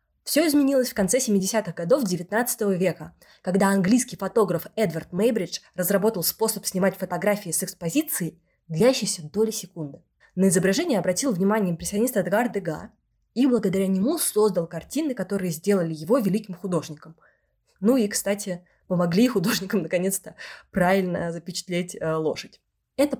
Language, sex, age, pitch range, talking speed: Russian, female, 20-39, 175-220 Hz, 130 wpm